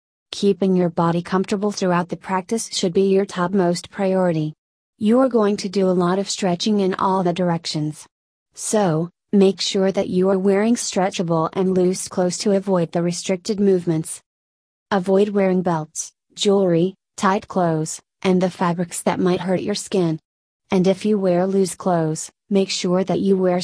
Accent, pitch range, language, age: American, 175-200 Hz, English, 30-49